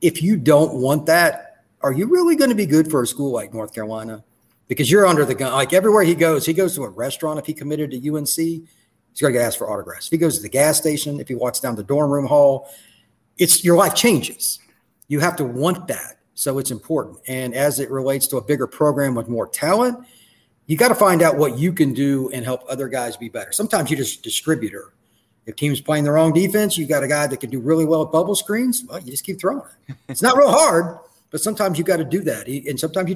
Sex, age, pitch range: male, 40-59, 130-170 Hz